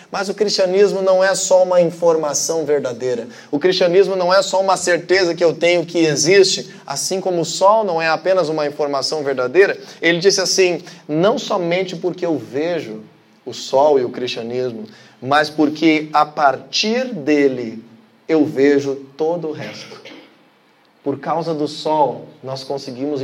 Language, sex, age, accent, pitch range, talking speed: Portuguese, male, 20-39, Brazilian, 140-185 Hz, 155 wpm